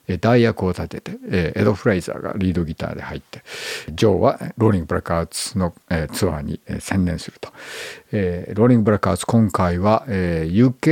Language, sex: Japanese, male